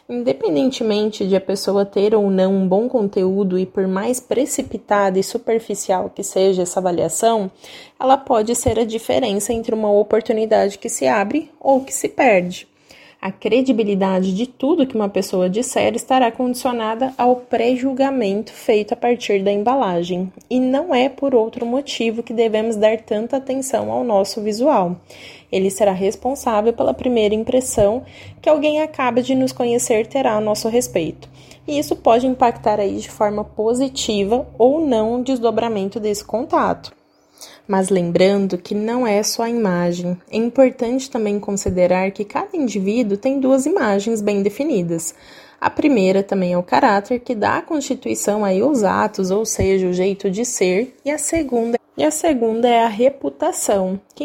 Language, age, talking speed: Portuguese, 20-39, 155 wpm